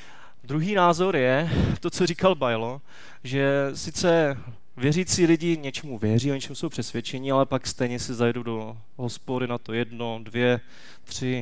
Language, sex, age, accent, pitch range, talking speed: Czech, male, 20-39, native, 120-150 Hz, 150 wpm